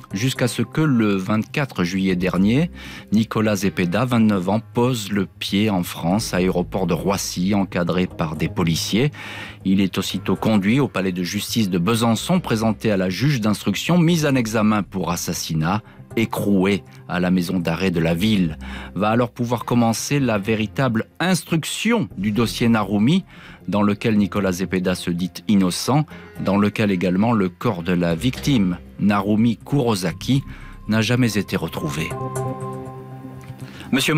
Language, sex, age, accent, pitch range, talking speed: French, male, 40-59, French, 95-125 Hz, 145 wpm